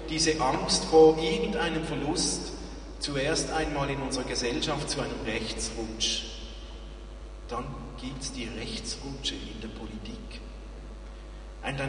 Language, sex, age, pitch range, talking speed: German, male, 40-59, 115-155 Hz, 110 wpm